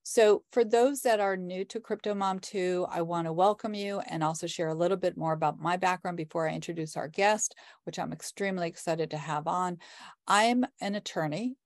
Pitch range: 160-195 Hz